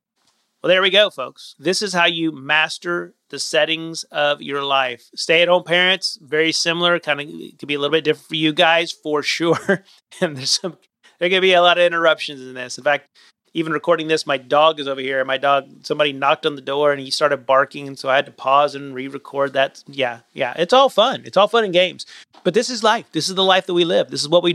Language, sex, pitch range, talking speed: English, male, 140-175 Hz, 240 wpm